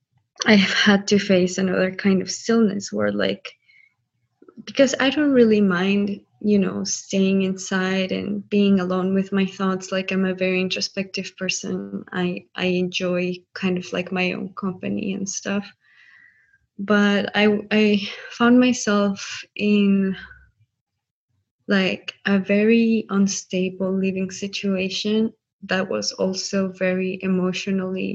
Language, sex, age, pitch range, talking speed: English, female, 20-39, 185-205 Hz, 130 wpm